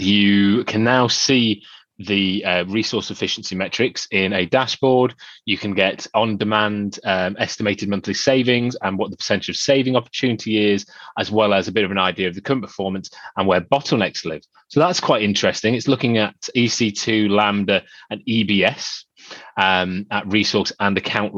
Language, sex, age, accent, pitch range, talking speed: English, male, 20-39, British, 95-115 Hz, 165 wpm